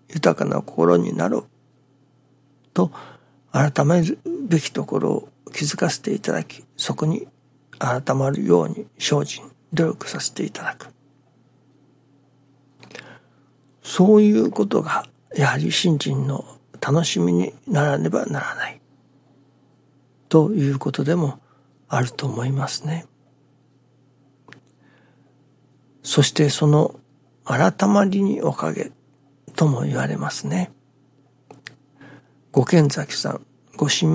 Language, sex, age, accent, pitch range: Japanese, male, 60-79, native, 135-150 Hz